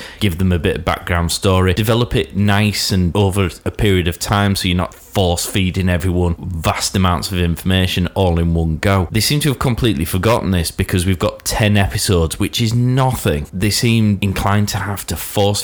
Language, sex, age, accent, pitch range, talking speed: English, male, 30-49, British, 90-105 Hz, 200 wpm